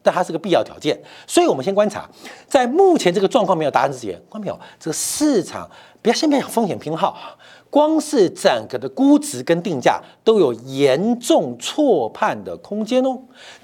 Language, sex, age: Chinese, male, 50-69